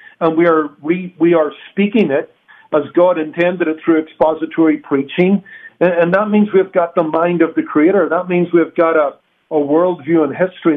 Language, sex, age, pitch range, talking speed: English, male, 50-69, 155-185 Hz, 195 wpm